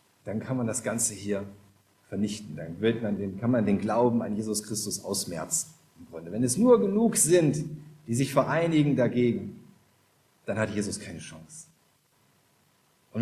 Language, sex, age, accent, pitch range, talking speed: German, male, 40-59, German, 100-135 Hz, 140 wpm